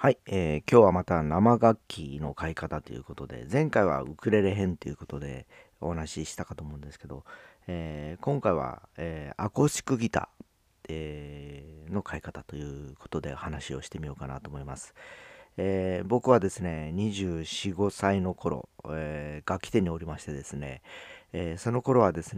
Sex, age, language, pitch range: male, 40-59, Japanese, 75-105 Hz